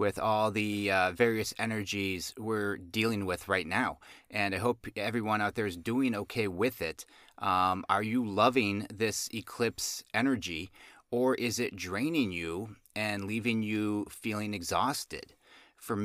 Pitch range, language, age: 95-115 Hz, English, 30-49